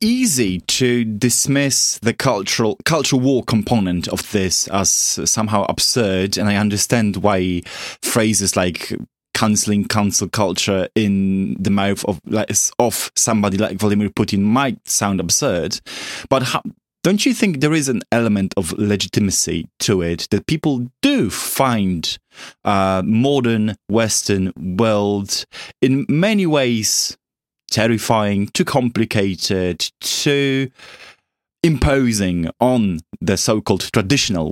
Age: 20-39